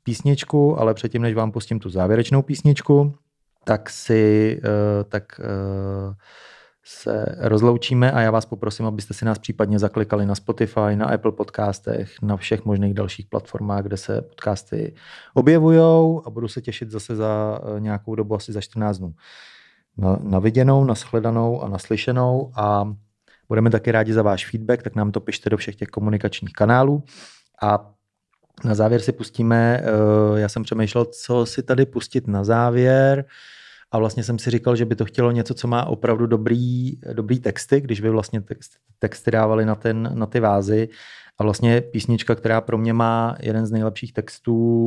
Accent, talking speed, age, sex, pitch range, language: native, 160 wpm, 30-49, male, 105-120 Hz, Czech